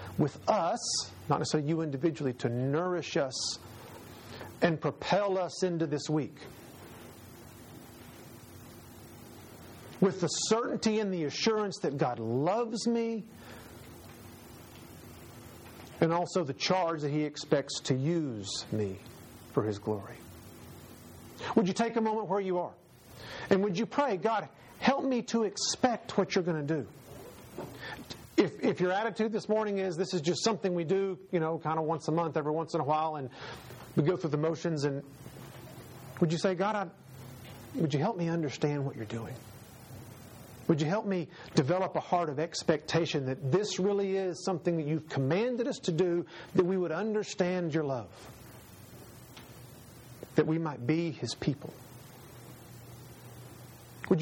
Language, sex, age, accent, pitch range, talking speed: English, male, 50-69, American, 120-180 Hz, 150 wpm